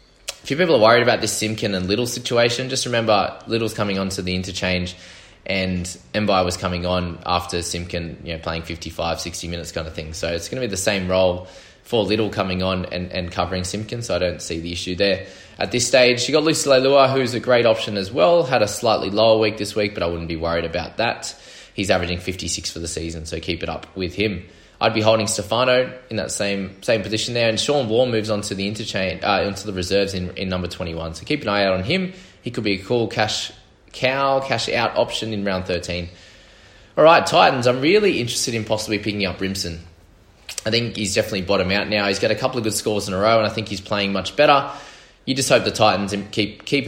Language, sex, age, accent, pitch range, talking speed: English, male, 20-39, Australian, 90-110 Hz, 235 wpm